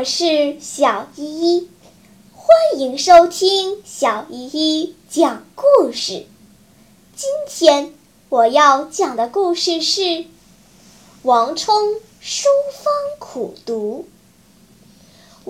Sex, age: male, 10-29